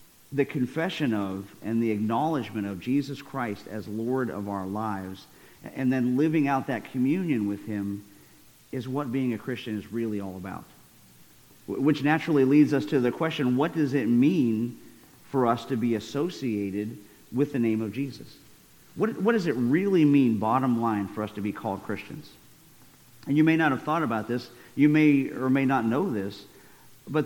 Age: 50-69